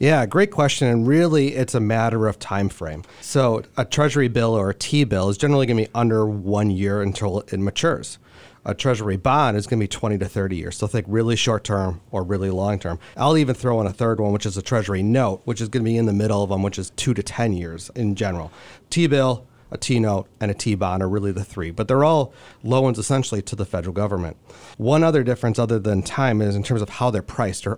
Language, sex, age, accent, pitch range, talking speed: English, male, 30-49, American, 100-125 Hz, 240 wpm